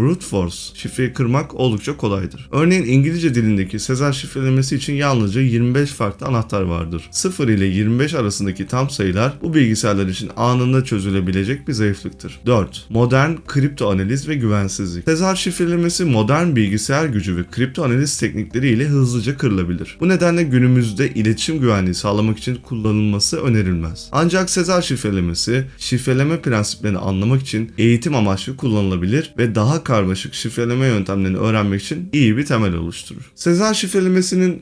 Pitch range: 100-145 Hz